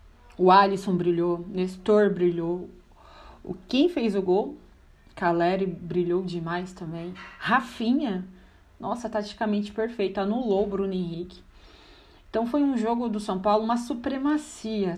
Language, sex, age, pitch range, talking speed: Portuguese, female, 30-49, 175-220 Hz, 125 wpm